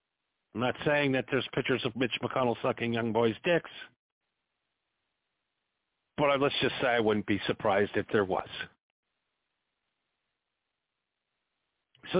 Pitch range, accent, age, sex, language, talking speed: 145-230 Hz, American, 50-69, male, English, 125 wpm